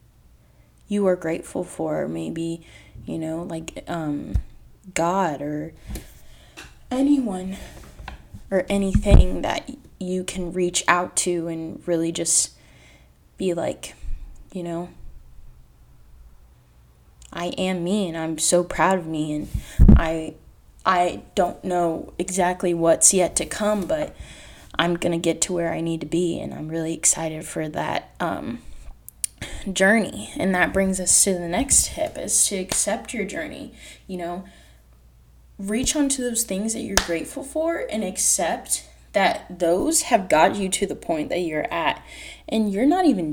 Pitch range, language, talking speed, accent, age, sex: 145-200 Hz, English, 145 wpm, American, 20-39, female